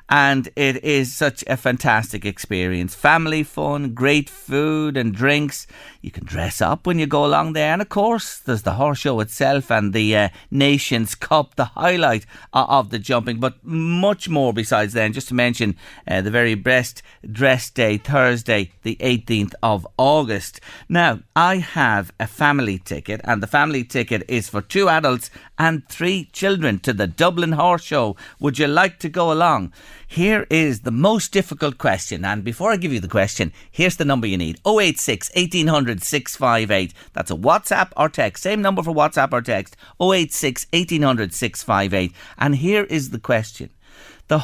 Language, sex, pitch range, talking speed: English, male, 105-155 Hz, 175 wpm